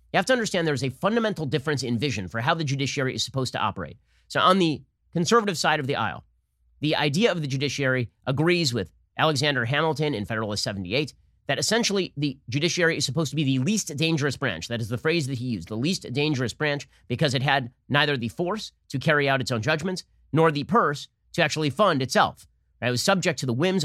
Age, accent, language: 30-49, American, English